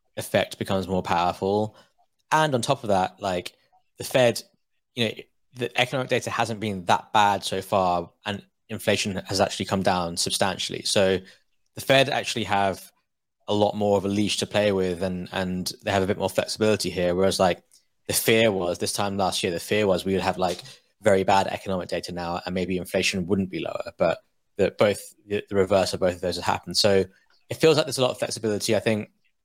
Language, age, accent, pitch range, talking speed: English, 20-39, British, 95-110 Hz, 210 wpm